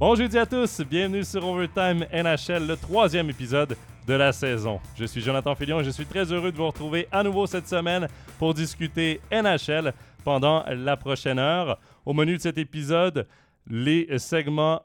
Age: 30-49